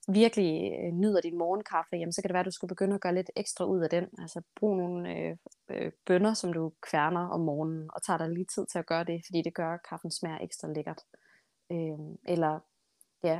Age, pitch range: 20-39, 165-190 Hz